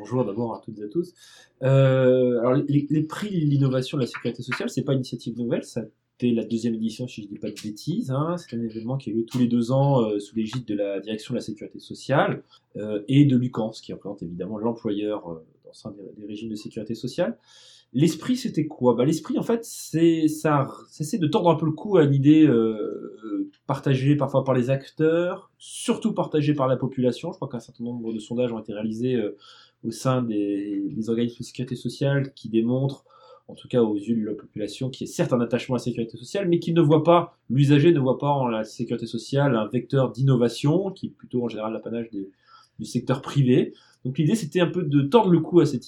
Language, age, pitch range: French, 20-39, 115-155 Hz